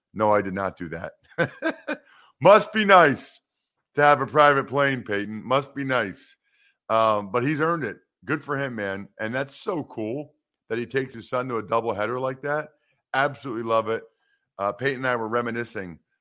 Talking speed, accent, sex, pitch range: 185 wpm, American, male, 95-125 Hz